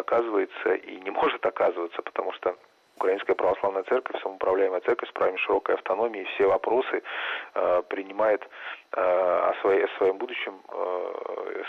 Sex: male